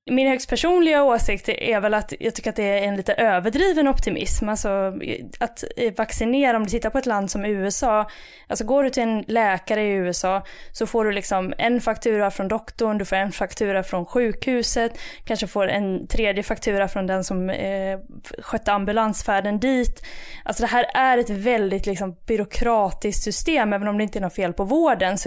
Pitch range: 200-245 Hz